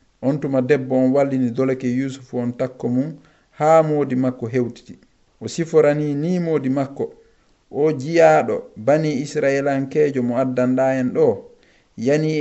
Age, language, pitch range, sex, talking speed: 50-69, English, 125-150 Hz, male, 115 wpm